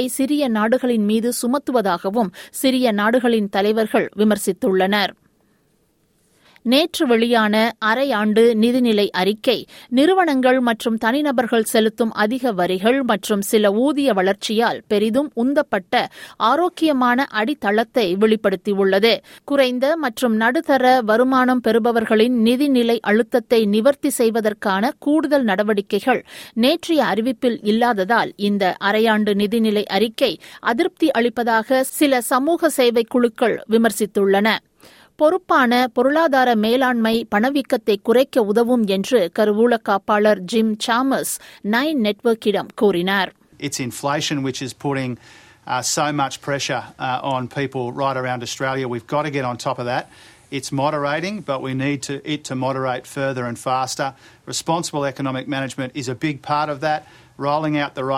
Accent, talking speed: native, 65 wpm